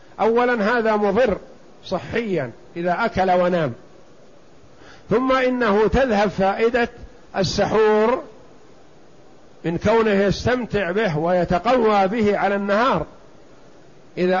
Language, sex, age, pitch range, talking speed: Arabic, male, 50-69, 180-220 Hz, 85 wpm